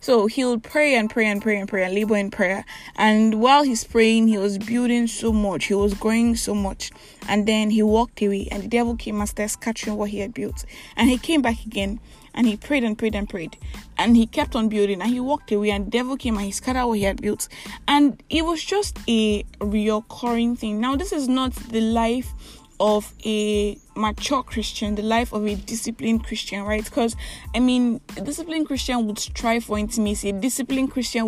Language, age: English, 10-29